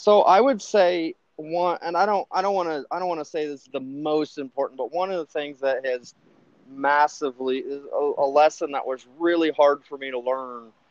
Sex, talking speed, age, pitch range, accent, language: male, 225 wpm, 30-49, 125-150 Hz, American, English